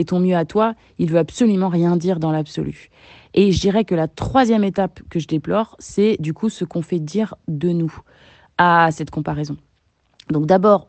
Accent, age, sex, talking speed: French, 20-39, female, 195 wpm